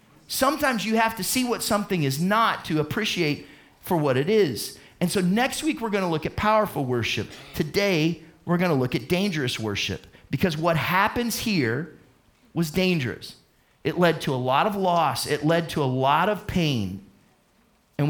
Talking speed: 175 wpm